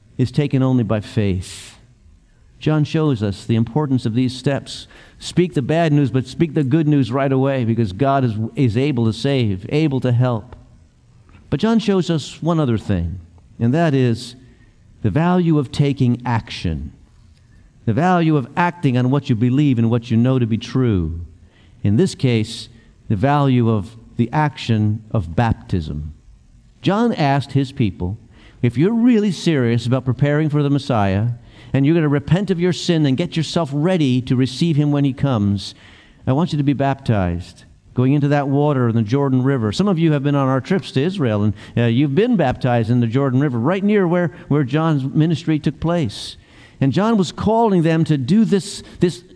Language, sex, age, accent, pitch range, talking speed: English, male, 50-69, American, 115-160 Hz, 190 wpm